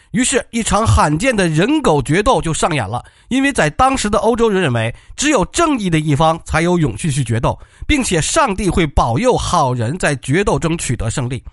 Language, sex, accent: Chinese, male, native